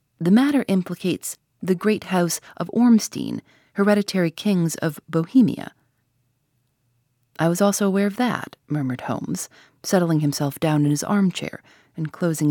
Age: 40-59